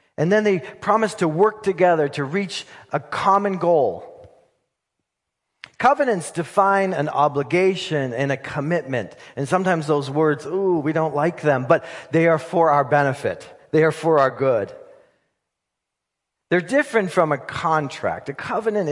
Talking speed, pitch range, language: 145 wpm, 140-185 Hz, English